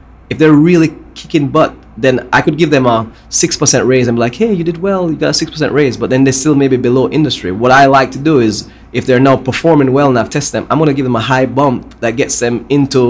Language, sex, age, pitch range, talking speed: English, male, 20-39, 120-150 Hz, 265 wpm